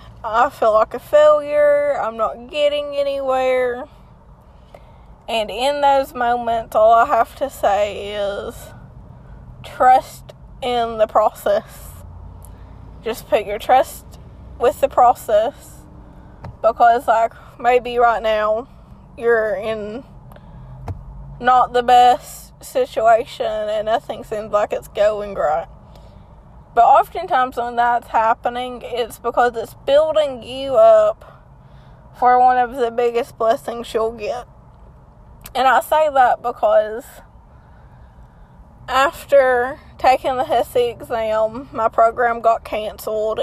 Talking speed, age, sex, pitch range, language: 110 wpm, 20-39, female, 225-280 Hz, English